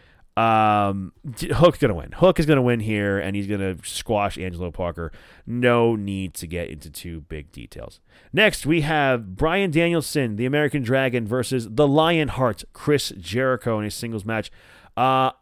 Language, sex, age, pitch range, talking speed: English, male, 30-49, 100-130 Hz, 170 wpm